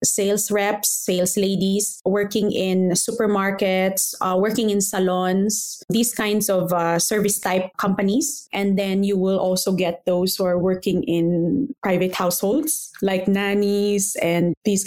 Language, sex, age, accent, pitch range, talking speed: English, female, 20-39, Filipino, 185-230 Hz, 140 wpm